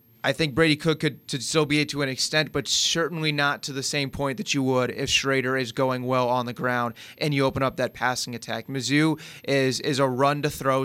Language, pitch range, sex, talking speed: English, 130-150 Hz, male, 245 wpm